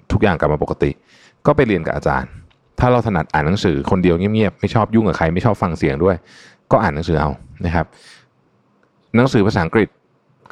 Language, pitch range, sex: Thai, 80-110 Hz, male